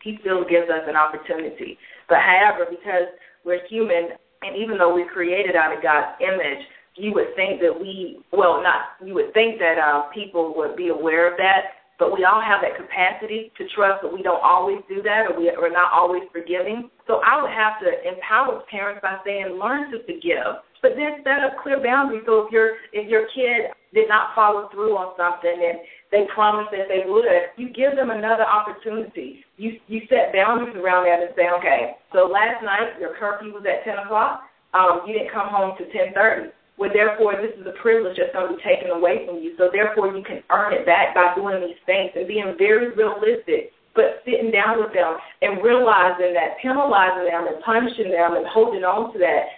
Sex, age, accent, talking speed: female, 30-49, American, 205 wpm